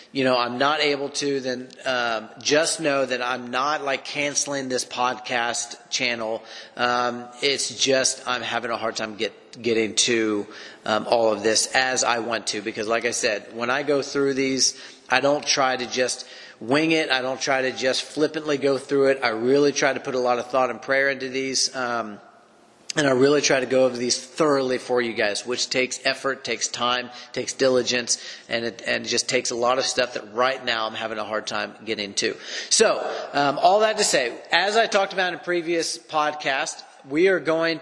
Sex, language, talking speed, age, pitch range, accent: male, English, 220 wpm, 30-49, 125-150 Hz, American